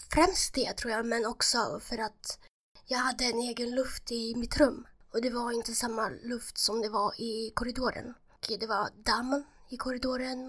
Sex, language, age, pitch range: female, Swedish, 20-39, 220-250 Hz